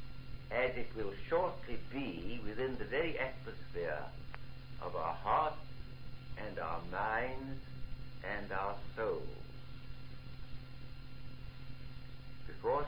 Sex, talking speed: male, 90 wpm